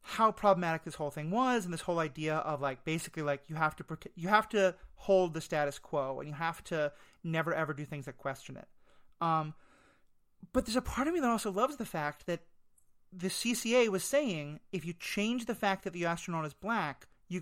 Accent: American